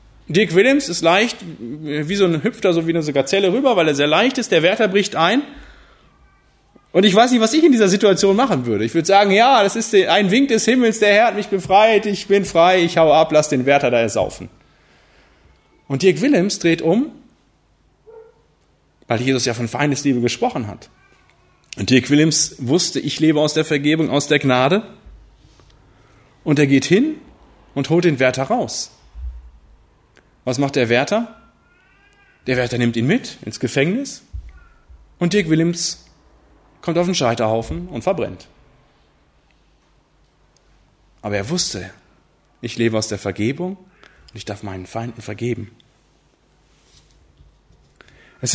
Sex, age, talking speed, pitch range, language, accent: male, 30-49, 160 wpm, 115-190 Hz, German, German